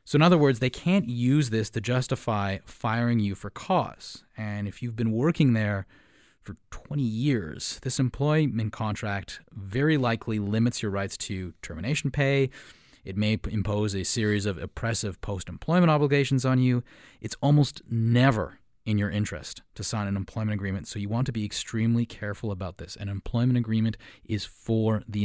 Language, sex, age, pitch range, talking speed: English, male, 30-49, 100-120 Hz, 170 wpm